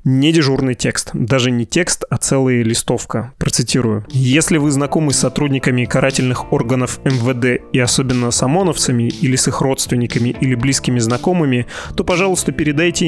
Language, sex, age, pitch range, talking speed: Russian, male, 20-39, 125-150 Hz, 145 wpm